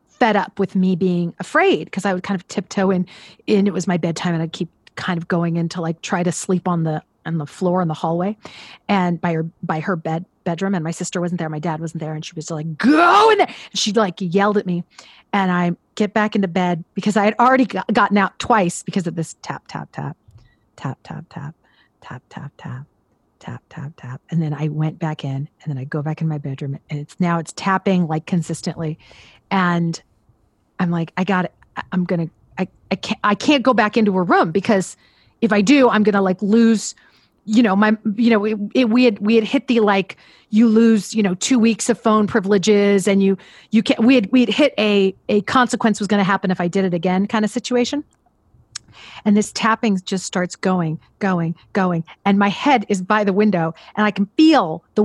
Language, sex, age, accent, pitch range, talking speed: English, female, 40-59, American, 165-215 Hz, 225 wpm